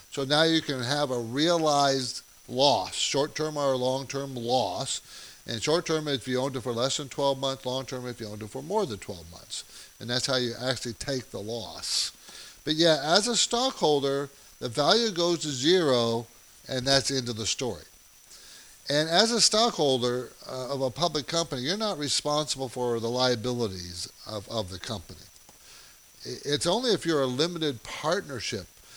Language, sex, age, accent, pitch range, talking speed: English, male, 50-69, American, 120-150 Hz, 170 wpm